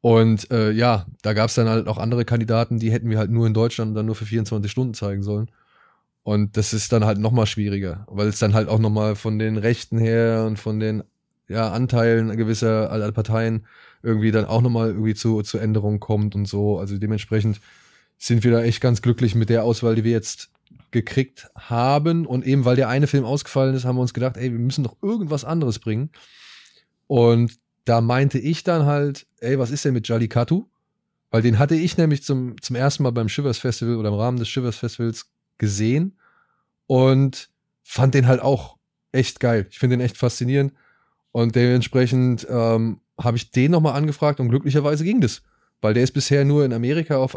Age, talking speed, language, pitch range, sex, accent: 20-39, 200 wpm, German, 110-135 Hz, male, German